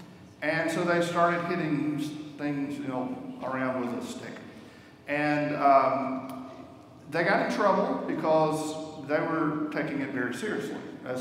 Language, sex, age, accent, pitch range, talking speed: English, male, 50-69, American, 135-155 Hz, 140 wpm